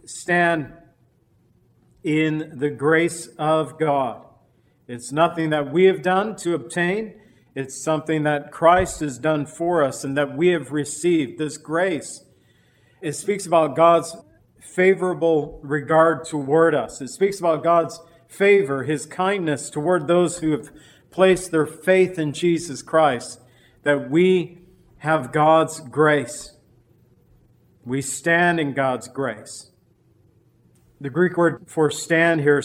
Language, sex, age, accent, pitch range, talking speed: English, male, 50-69, American, 145-170 Hz, 130 wpm